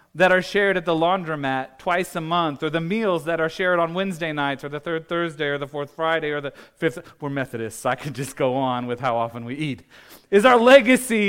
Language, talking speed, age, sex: English, 235 wpm, 40-59, male